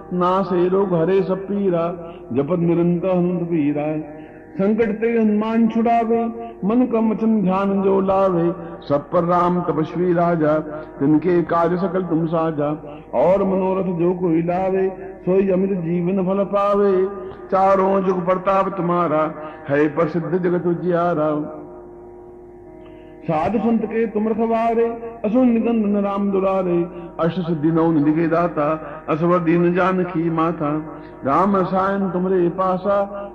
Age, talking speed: 50-69, 95 wpm